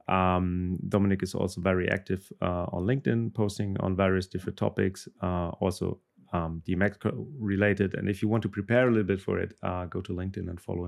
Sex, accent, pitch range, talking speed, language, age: male, German, 95-110 Hz, 200 wpm, English, 30-49